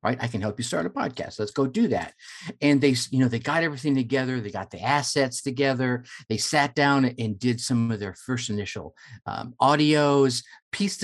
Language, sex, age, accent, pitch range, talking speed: English, male, 50-69, American, 115-160 Hz, 205 wpm